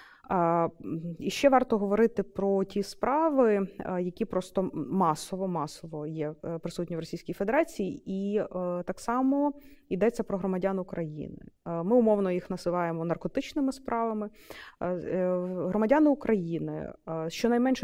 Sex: female